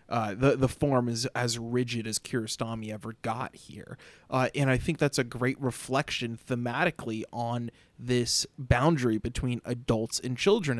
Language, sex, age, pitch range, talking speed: English, male, 30-49, 115-135 Hz, 155 wpm